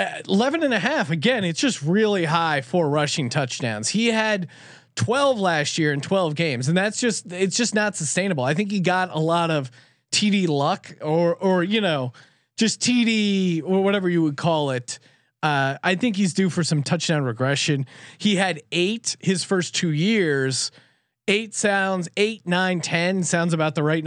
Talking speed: 180 wpm